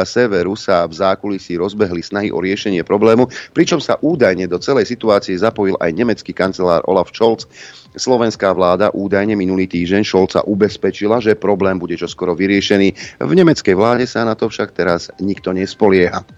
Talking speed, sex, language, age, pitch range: 160 wpm, male, Slovak, 40-59, 95-120 Hz